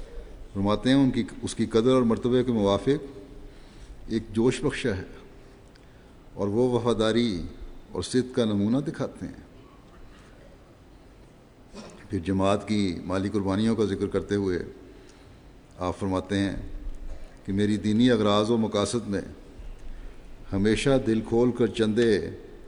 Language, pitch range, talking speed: Urdu, 100-120 Hz, 125 wpm